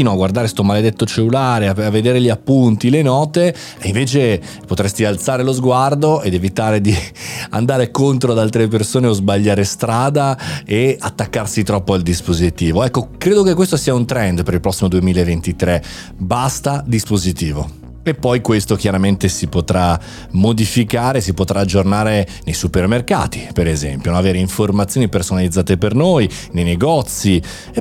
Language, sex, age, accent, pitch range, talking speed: Italian, male, 30-49, native, 95-130 Hz, 145 wpm